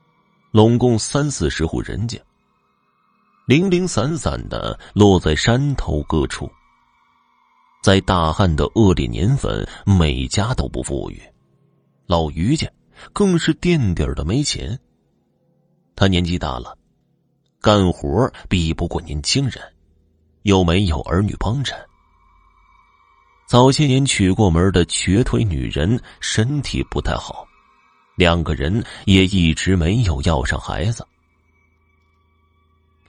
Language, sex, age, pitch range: Chinese, male, 30-49, 80-115 Hz